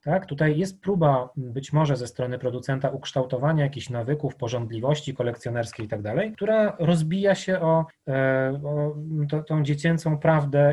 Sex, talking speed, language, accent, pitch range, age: male, 140 wpm, Polish, native, 120-160 Hz, 30-49